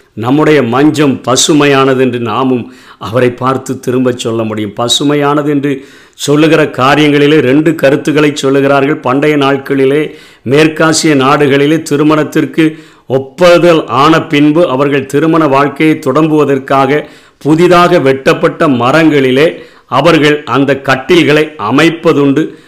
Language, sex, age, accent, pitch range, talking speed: Tamil, male, 50-69, native, 125-155 Hz, 95 wpm